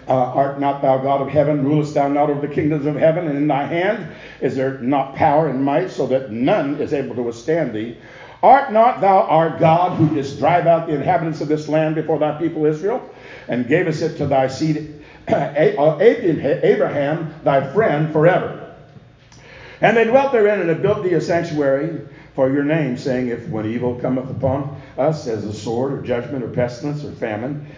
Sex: male